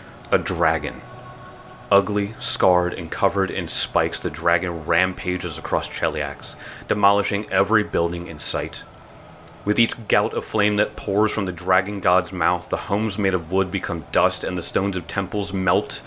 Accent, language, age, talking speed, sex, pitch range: American, English, 30-49, 160 wpm, male, 90-115 Hz